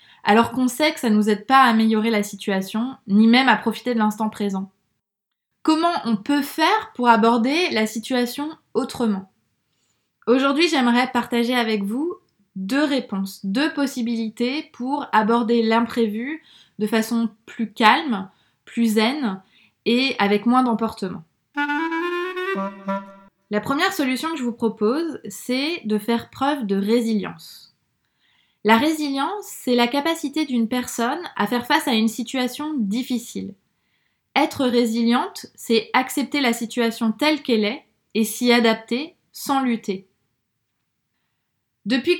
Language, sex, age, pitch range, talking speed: French, female, 20-39, 220-275 Hz, 130 wpm